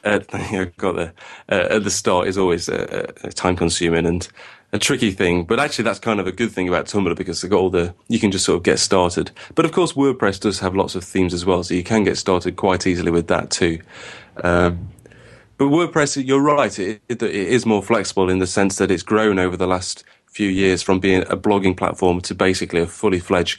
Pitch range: 90-105 Hz